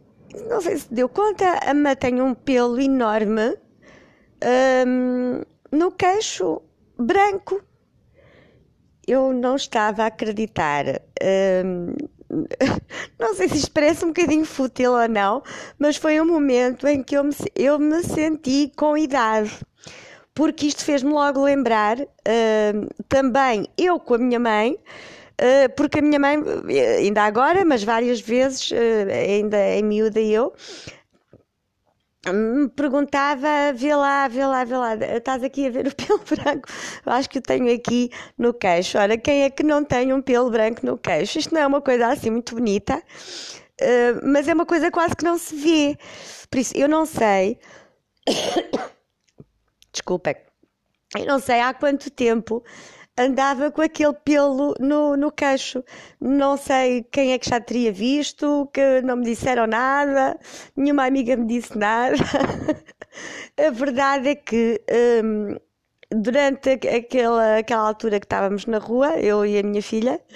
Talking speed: 150 wpm